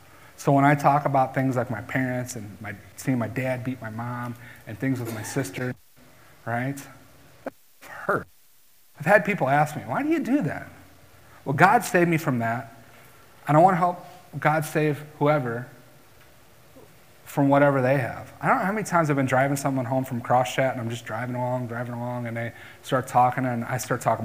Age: 30-49